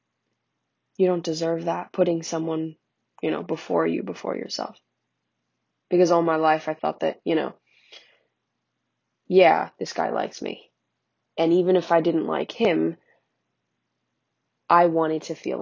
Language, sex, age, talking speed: English, female, 20-39, 140 wpm